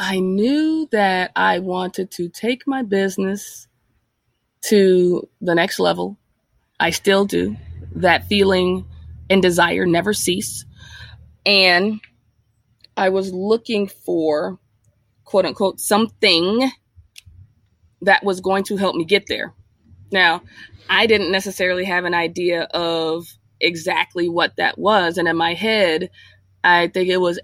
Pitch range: 160-215 Hz